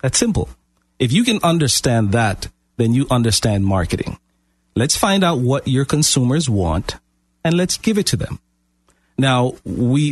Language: English